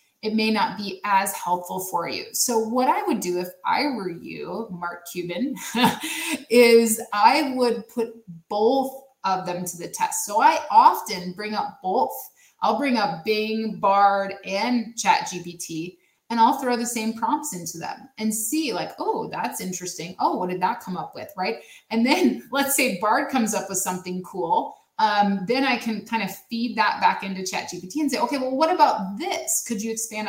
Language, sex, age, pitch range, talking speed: English, female, 20-39, 190-250 Hz, 190 wpm